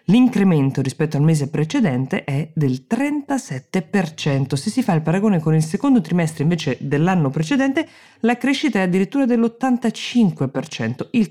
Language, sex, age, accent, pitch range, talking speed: Italian, female, 20-39, native, 140-195 Hz, 140 wpm